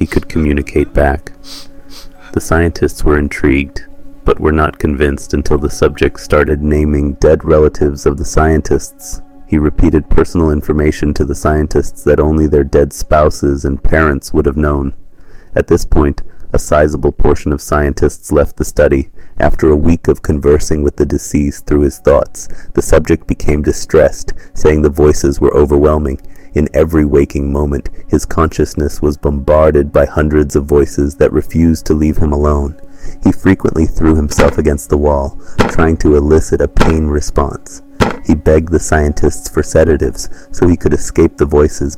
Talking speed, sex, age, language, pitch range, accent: 160 wpm, male, 30-49, English, 75-85 Hz, American